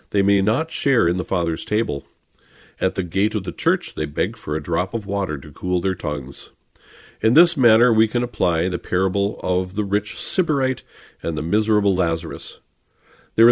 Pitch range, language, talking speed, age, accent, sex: 85-110 Hz, English, 185 wpm, 50-69, American, male